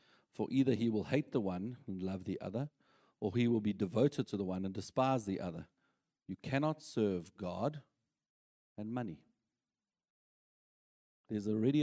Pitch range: 95-125 Hz